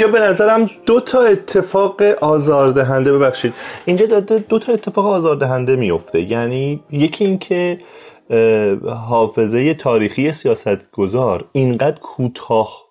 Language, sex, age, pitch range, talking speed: Persian, male, 30-49, 115-165 Hz, 100 wpm